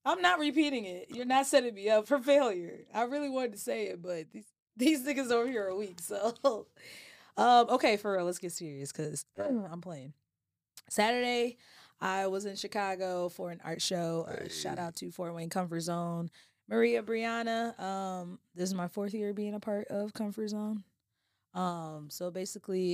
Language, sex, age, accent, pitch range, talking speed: English, female, 20-39, American, 170-225 Hz, 185 wpm